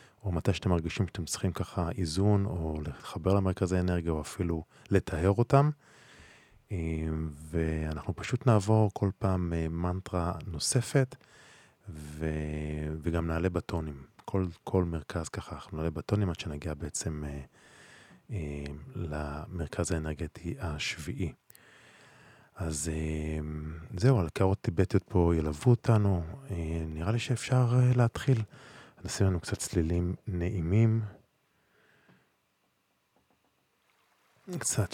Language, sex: Hebrew, male